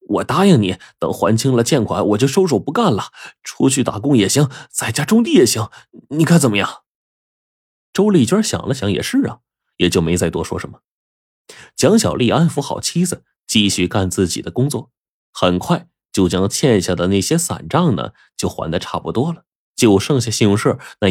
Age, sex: 30-49, male